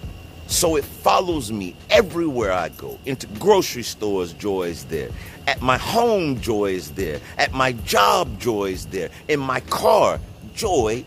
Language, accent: English, American